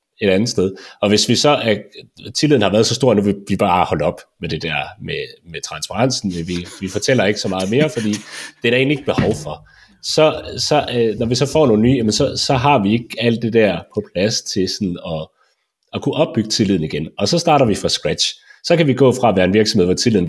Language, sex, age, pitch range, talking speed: Danish, male, 30-49, 90-125 Hz, 245 wpm